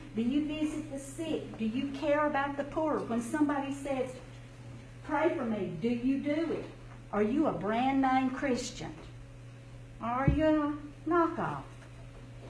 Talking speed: 145 wpm